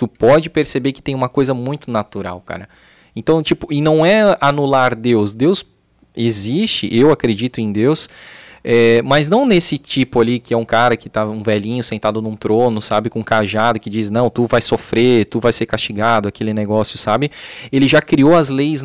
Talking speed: 190 wpm